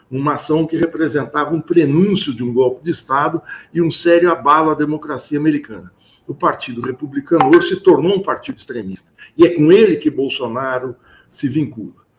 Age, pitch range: 60-79, 140-190 Hz